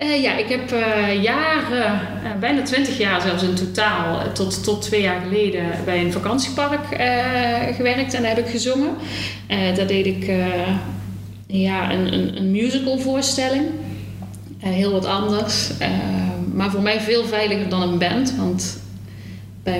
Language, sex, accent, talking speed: Dutch, female, Dutch, 135 wpm